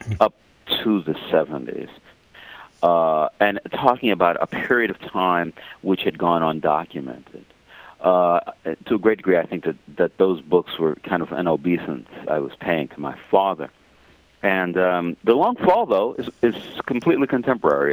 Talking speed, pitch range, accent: 160 wpm, 80-100 Hz, American